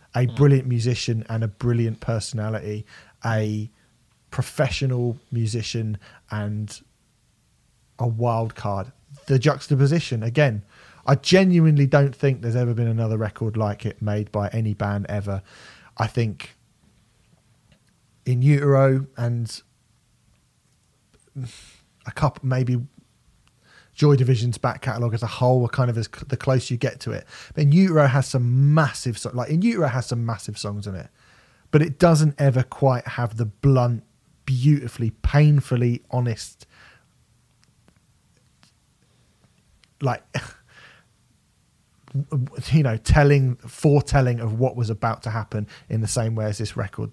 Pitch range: 110-135 Hz